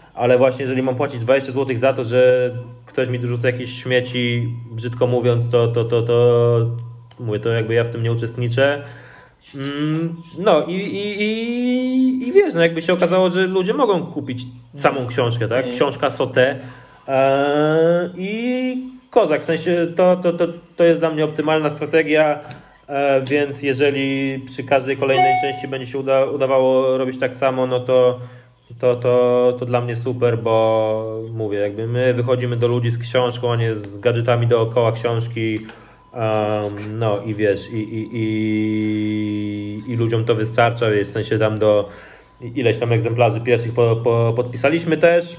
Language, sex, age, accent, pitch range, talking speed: Portuguese, male, 20-39, Polish, 115-150 Hz, 155 wpm